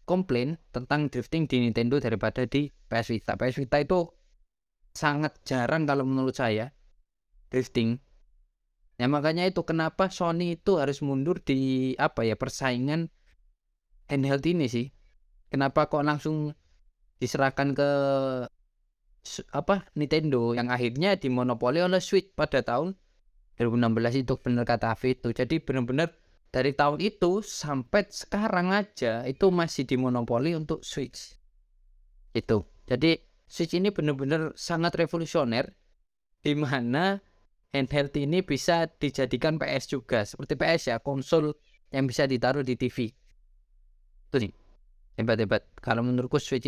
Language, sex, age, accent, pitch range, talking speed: Indonesian, male, 20-39, native, 120-155 Hz, 125 wpm